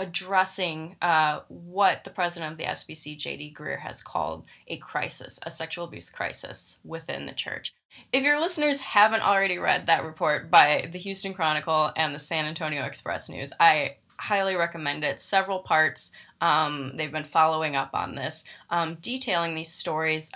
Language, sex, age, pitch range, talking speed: English, female, 20-39, 155-180 Hz, 165 wpm